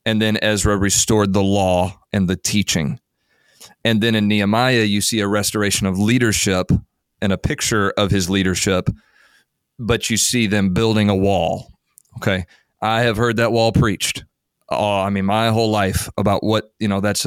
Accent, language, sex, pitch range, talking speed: American, English, male, 100-115 Hz, 175 wpm